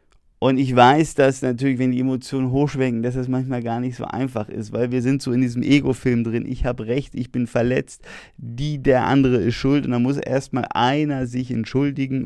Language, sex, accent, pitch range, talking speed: German, male, German, 115-130 Hz, 210 wpm